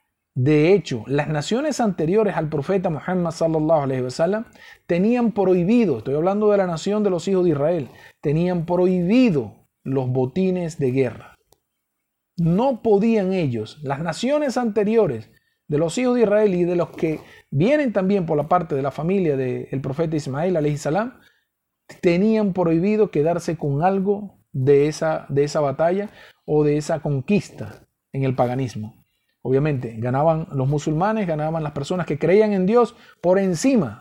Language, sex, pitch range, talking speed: Spanish, male, 150-210 Hz, 155 wpm